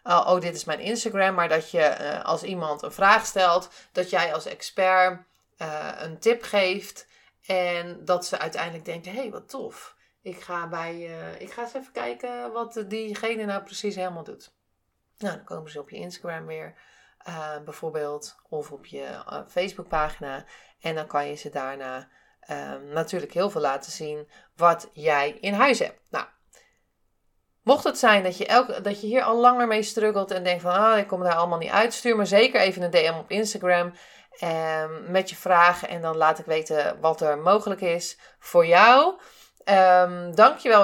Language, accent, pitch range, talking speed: Dutch, Dutch, 160-215 Hz, 180 wpm